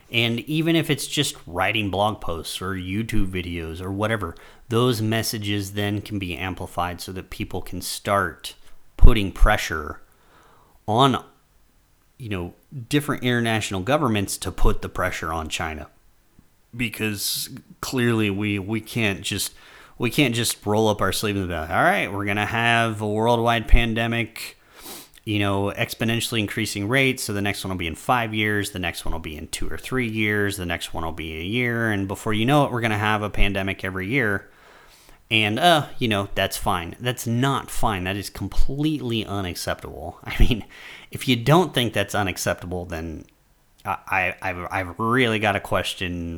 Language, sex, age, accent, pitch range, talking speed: English, male, 30-49, American, 90-115 Hz, 175 wpm